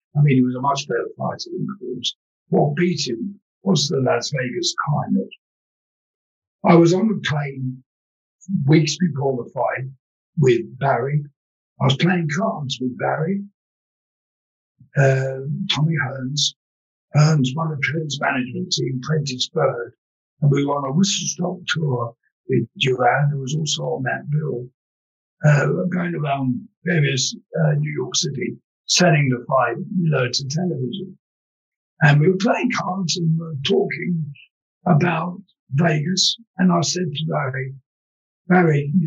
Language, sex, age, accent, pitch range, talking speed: English, male, 60-79, British, 135-180 Hz, 145 wpm